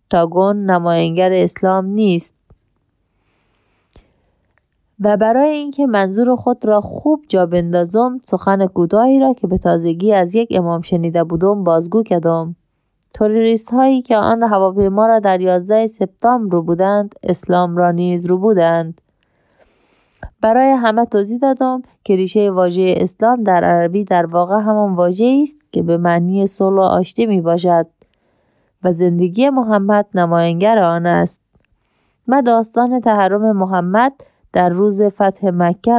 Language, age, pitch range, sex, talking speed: Persian, 30-49, 180-215 Hz, female, 135 wpm